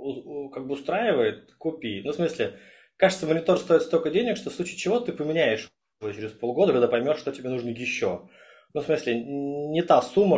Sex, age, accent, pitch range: male, 20-39, native, 120-160 Hz